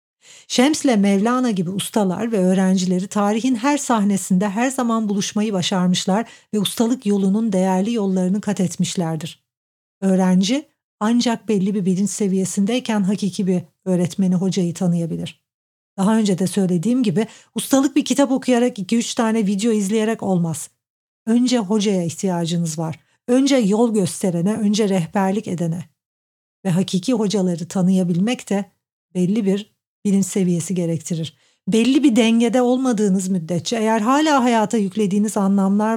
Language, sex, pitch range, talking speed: Turkish, female, 185-230 Hz, 125 wpm